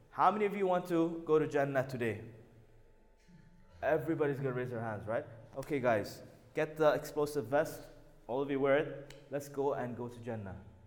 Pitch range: 125-175 Hz